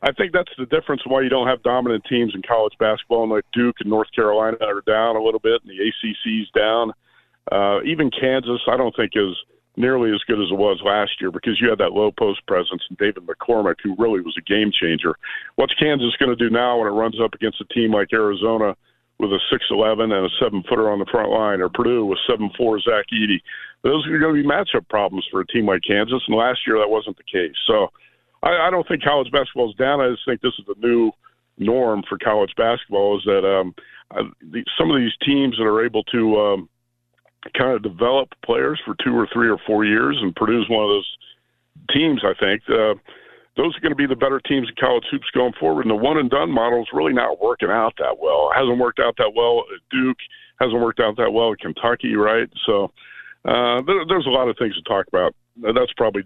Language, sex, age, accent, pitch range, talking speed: English, male, 50-69, American, 110-140 Hz, 230 wpm